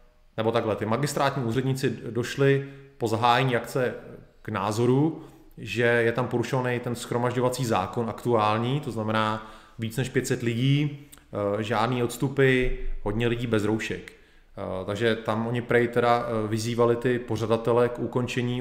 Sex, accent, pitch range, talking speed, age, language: male, native, 110-125 Hz, 130 wpm, 30-49, Czech